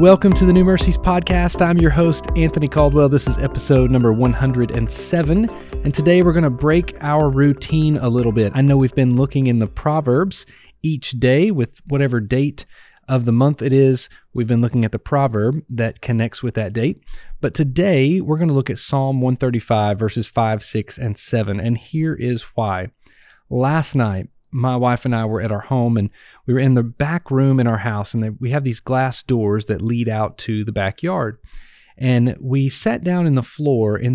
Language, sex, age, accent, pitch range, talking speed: English, male, 30-49, American, 115-155 Hz, 200 wpm